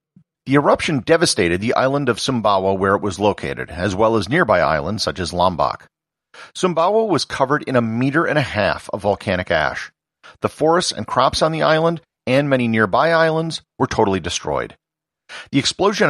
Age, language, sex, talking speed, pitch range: 40-59, English, male, 175 wpm, 100-155 Hz